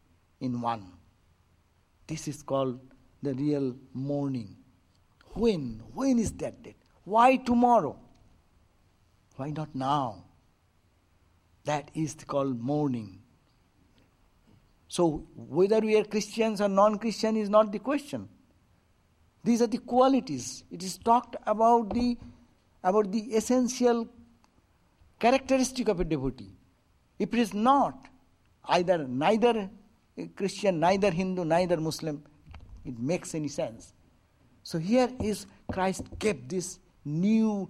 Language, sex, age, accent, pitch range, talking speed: English, male, 60-79, Indian, 125-205 Hz, 115 wpm